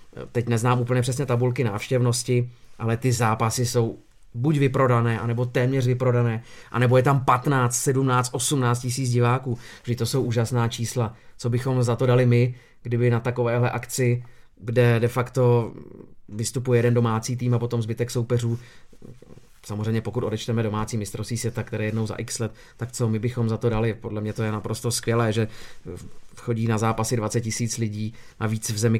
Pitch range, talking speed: 115-125 Hz, 170 wpm